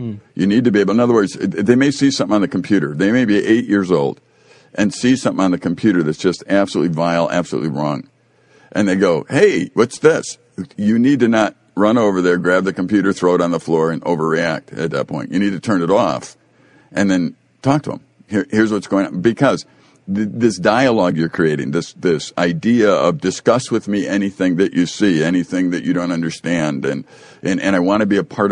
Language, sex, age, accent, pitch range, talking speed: English, male, 50-69, American, 85-115 Hz, 220 wpm